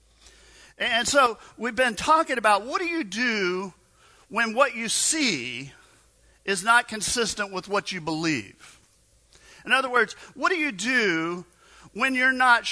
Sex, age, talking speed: male, 50-69, 145 wpm